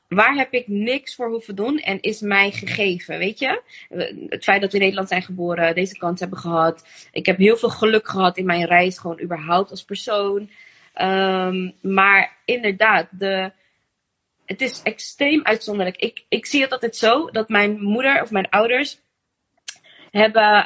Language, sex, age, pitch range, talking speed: Dutch, female, 20-39, 180-230 Hz, 170 wpm